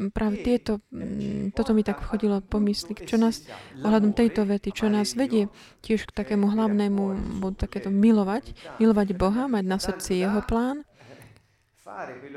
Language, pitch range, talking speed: Slovak, 195-220 Hz, 140 wpm